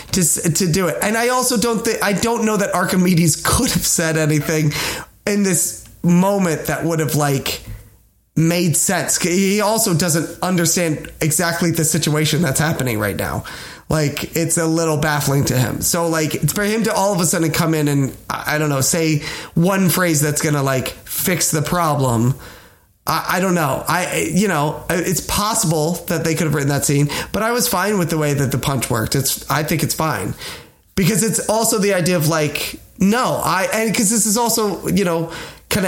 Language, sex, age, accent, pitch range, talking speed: English, male, 30-49, American, 150-190 Hz, 200 wpm